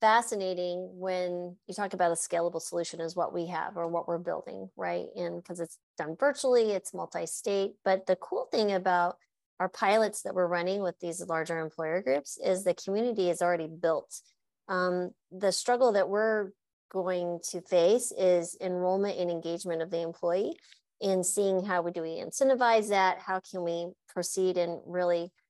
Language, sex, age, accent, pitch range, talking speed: English, female, 30-49, American, 175-210 Hz, 175 wpm